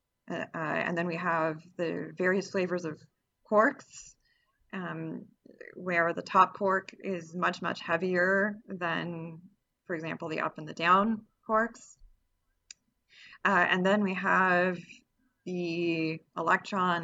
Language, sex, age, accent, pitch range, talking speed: English, female, 20-39, American, 170-205 Hz, 115 wpm